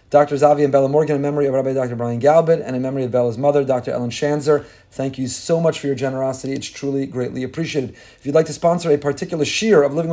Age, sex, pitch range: 30-49, male, 135-170 Hz